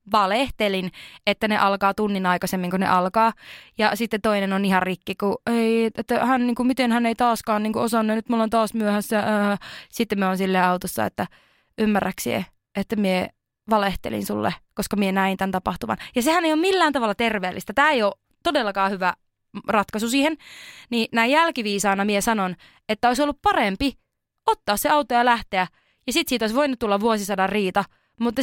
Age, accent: 20-39, native